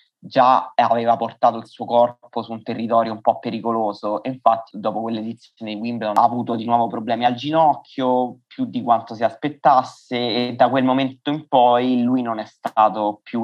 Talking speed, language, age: 185 wpm, Italian, 20-39